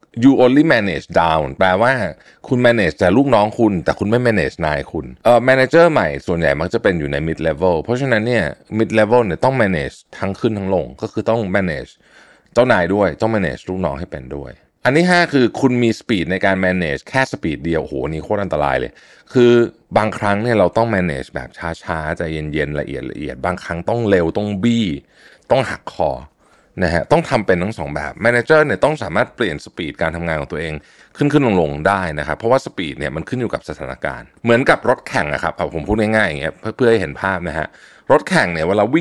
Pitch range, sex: 80-115 Hz, male